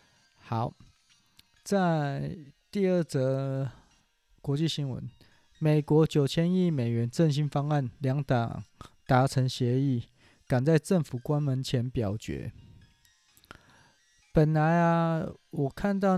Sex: male